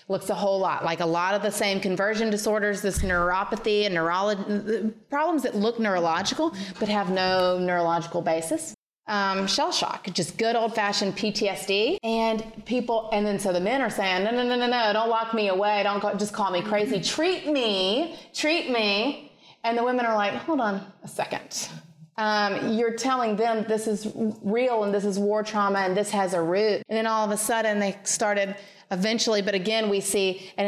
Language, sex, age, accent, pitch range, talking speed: English, female, 30-49, American, 185-220 Hz, 195 wpm